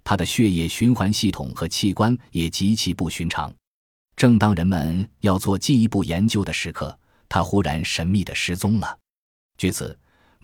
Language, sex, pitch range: Chinese, male, 85-110 Hz